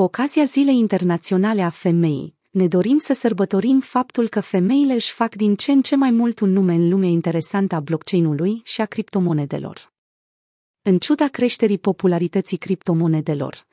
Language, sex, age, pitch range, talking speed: Romanian, female, 30-49, 175-225 Hz, 155 wpm